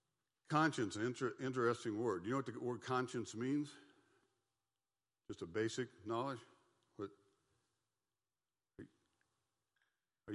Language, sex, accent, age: English, male, American, 50-69